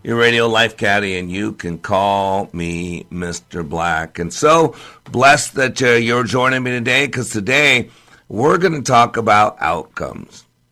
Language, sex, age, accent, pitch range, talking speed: English, male, 50-69, American, 110-135 Hz, 150 wpm